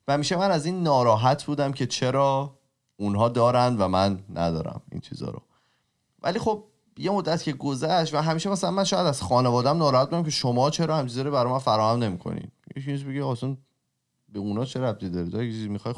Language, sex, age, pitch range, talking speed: Persian, male, 30-49, 105-140 Hz, 200 wpm